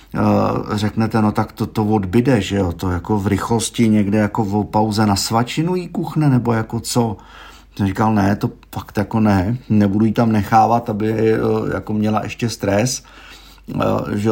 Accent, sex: native, male